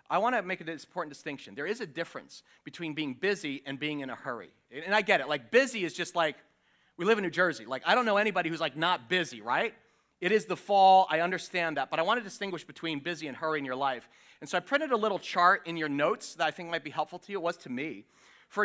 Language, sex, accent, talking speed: English, male, American, 275 wpm